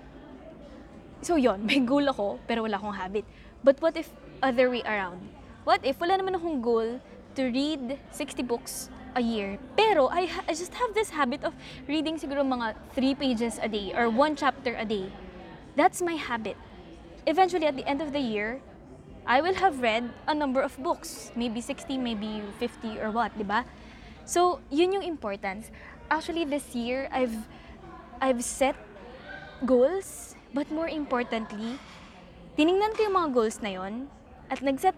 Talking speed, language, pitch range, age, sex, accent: 165 wpm, Filipino, 230-290 Hz, 20-39, female, native